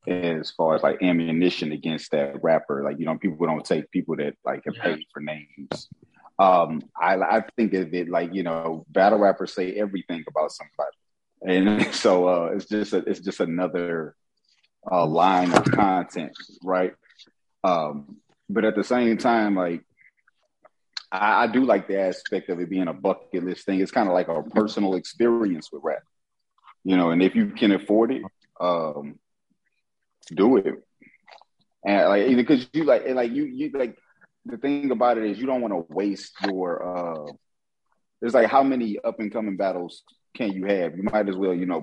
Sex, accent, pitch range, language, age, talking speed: male, American, 90-110 Hz, English, 30-49, 180 wpm